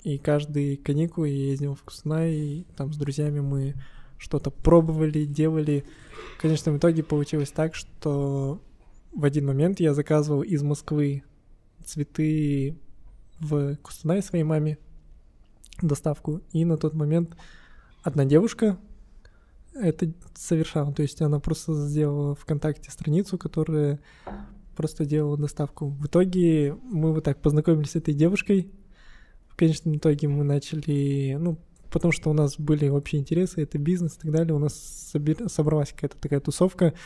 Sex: male